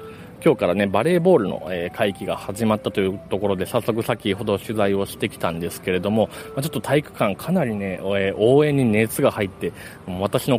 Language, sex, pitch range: Japanese, male, 105-135 Hz